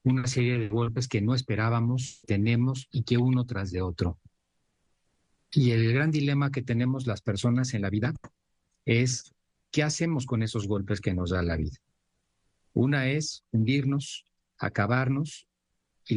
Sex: male